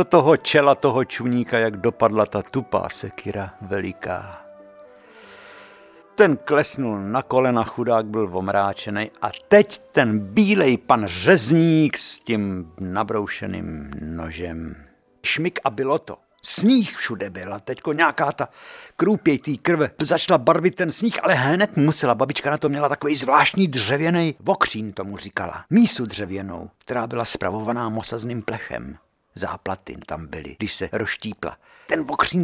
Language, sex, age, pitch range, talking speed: Czech, male, 60-79, 105-165 Hz, 135 wpm